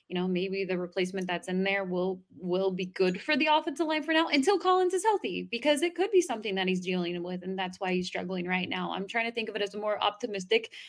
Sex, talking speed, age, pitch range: female, 265 wpm, 20-39, 180-215 Hz